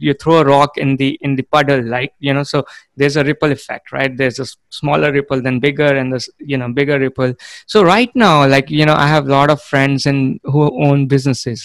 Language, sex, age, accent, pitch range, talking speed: English, male, 20-39, Indian, 130-150 Hz, 235 wpm